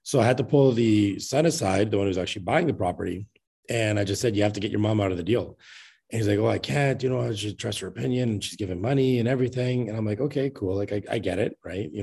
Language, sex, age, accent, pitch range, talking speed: English, male, 30-49, American, 95-115 Hz, 300 wpm